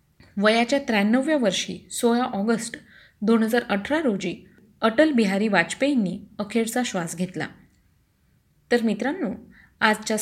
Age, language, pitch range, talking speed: 20-39, Marathi, 195-255 Hz, 100 wpm